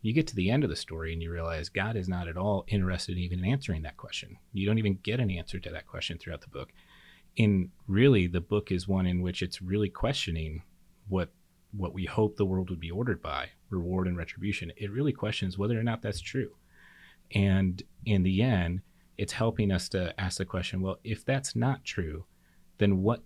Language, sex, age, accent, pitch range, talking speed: English, male, 30-49, American, 90-105 Hz, 215 wpm